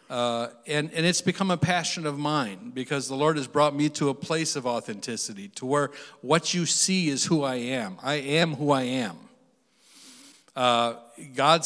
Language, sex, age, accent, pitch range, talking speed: English, male, 60-79, American, 150-175 Hz, 185 wpm